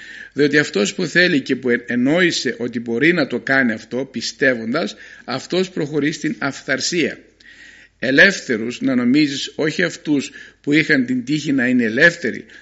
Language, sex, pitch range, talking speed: Greek, male, 125-170 Hz, 145 wpm